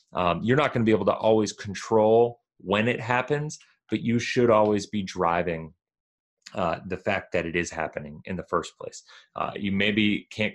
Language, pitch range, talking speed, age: English, 95-110 Hz, 195 wpm, 30-49